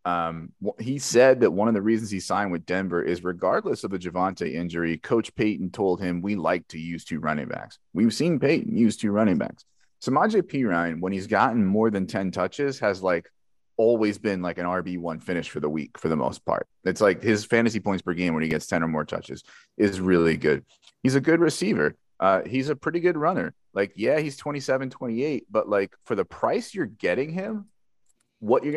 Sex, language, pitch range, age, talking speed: male, English, 90-130 Hz, 30-49, 215 wpm